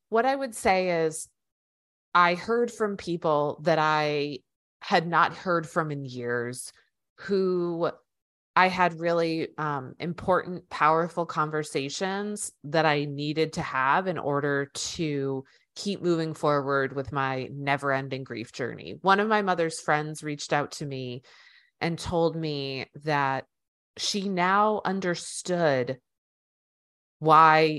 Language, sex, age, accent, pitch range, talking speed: English, female, 30-49, American, 145-180 Hz, 125 wpm